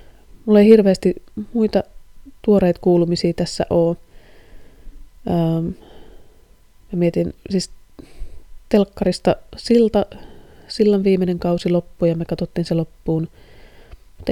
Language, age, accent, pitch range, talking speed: Finnish, 30-49, native, 165-200 Hz, 100 wpm